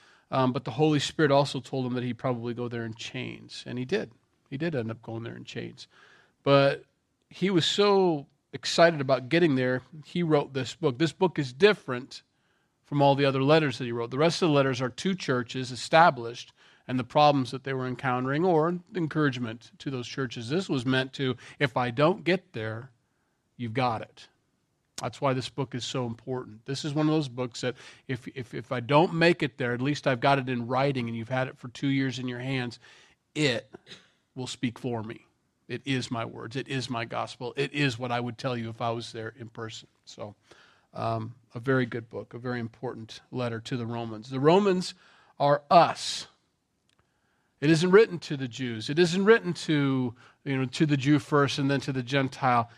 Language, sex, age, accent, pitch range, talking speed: English, male, 40-59, American, 125-150 Hz, 210 wpm